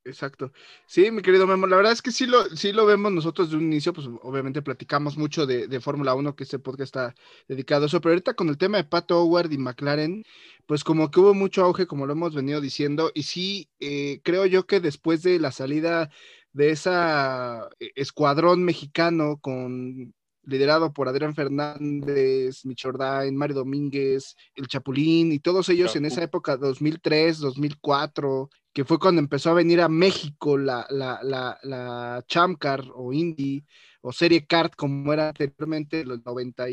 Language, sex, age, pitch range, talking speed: Spanish, male, 20-39, 135-170 Hz, 180 wpm